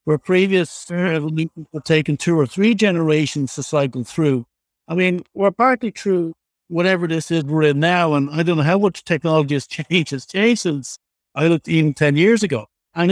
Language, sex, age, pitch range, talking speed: English, male, 60-79, 145-175 Hz, 190 wpm